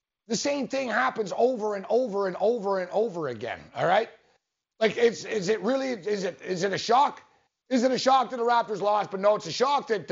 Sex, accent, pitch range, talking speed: male, American, 175-225 Hz, 230 wpm